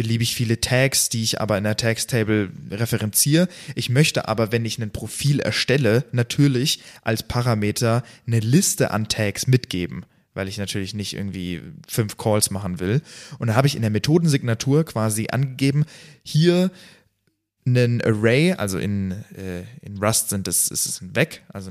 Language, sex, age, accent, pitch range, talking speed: German, male, 20-39, German, 110-135 Hz, 165 wpm